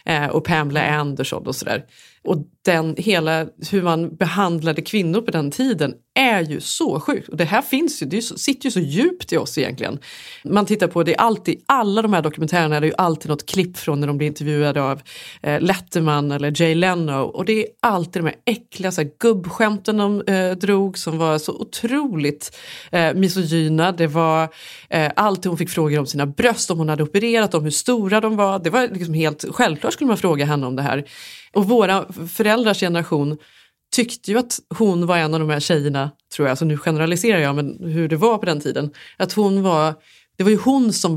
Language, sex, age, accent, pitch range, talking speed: Swedish, female, 30-49, native, 155-205 Hz, 210 wpm